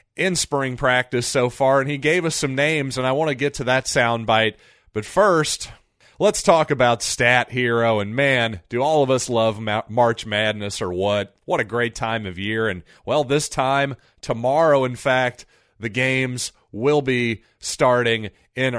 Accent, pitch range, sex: American, 105-135 Hz, male